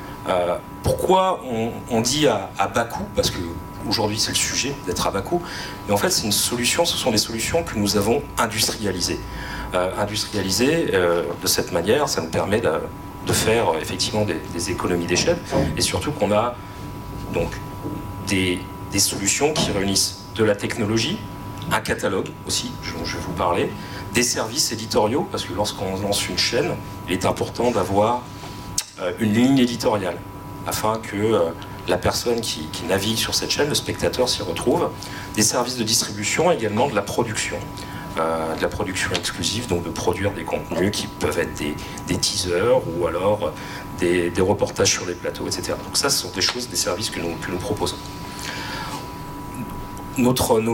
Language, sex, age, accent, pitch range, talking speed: French, male, 40-59, French, 95-115 Hz, 175 wpm